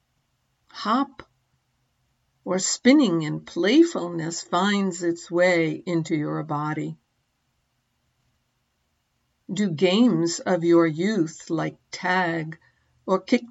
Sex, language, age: female, English, 60-79